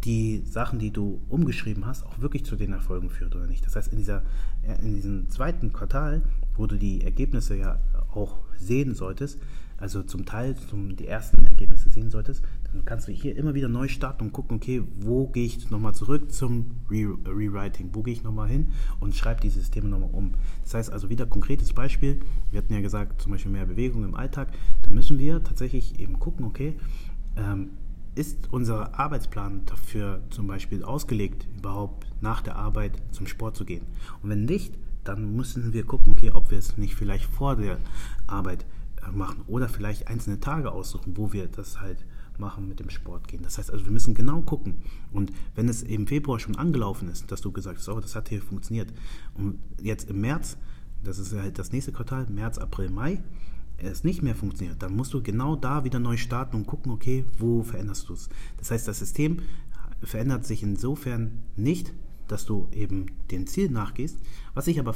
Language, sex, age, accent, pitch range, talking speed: German, male, 30-49, German, 100-125 Hz, 195 wpm